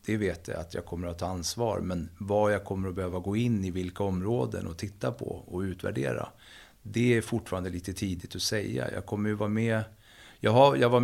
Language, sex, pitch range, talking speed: English, male, 95-115 Hz, 210 wpm